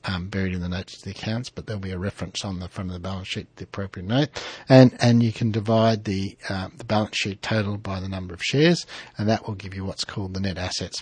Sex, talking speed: male, 265 wpm